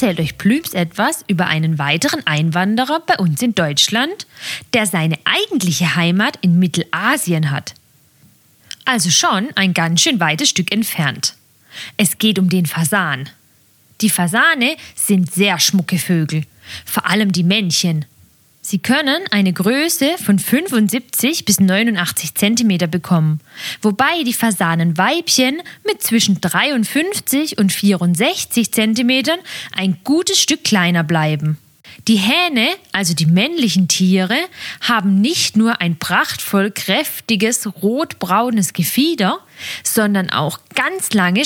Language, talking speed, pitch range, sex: German, 125 wpm, 170-245 Hz, female